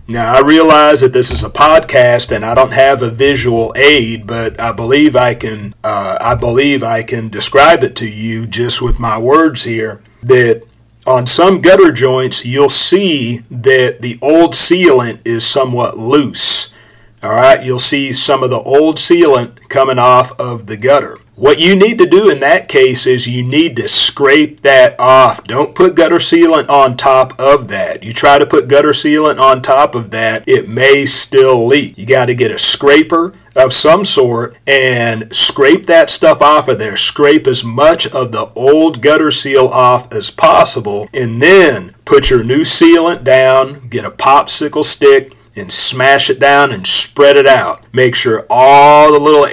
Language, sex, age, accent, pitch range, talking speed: English, male, 40-59, American, 120-150 Hz, 180 wpm